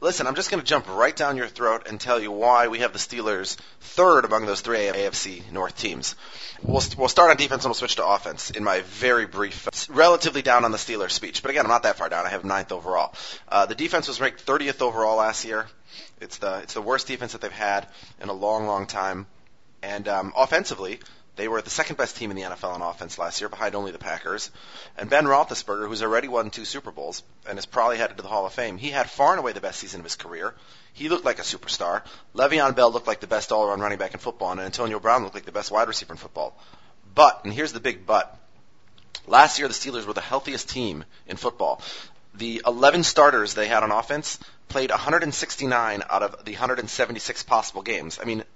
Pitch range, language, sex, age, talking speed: 105-135 Hz, English, male, 30-49, 230 wpm